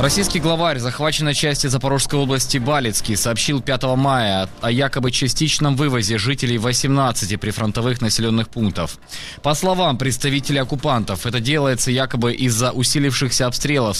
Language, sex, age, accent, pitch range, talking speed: Ukrainian, male, 20-39, native, 115-140 Hz, 125 wpm